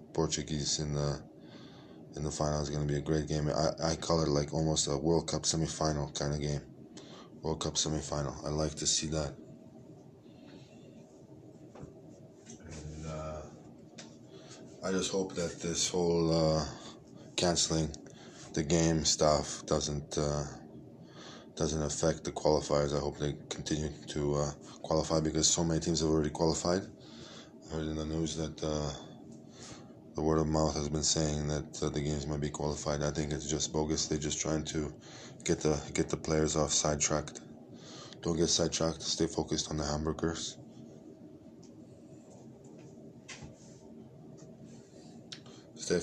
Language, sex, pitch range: Hebrew, male, 75-80 Hz